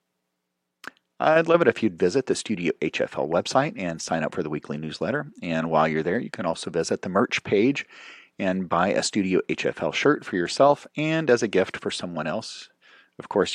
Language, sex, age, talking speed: English, male, 40-59, 200 wpm